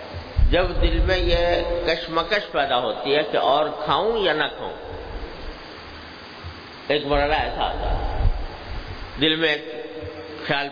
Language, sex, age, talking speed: English, male, 50-69, 120 wpm